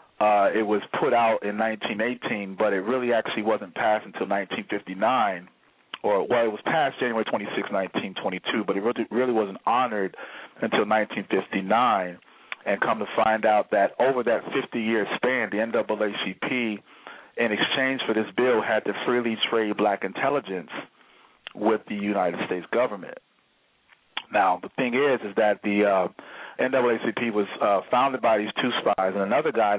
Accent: American